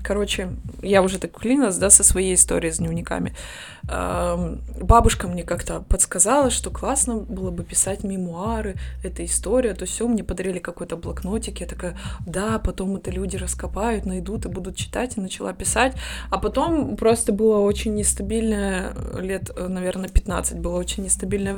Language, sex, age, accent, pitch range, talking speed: Russian, female, 20-39, native, 175-210 Hz, 155 wpm